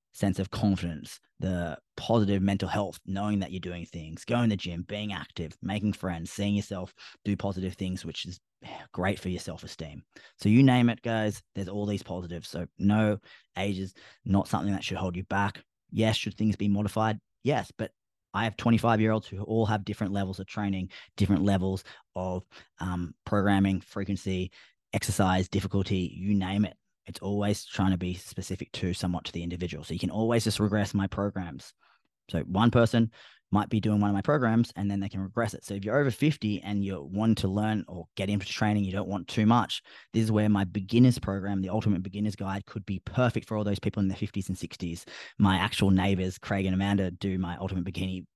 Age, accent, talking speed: 20-39, Australian, 205 wpm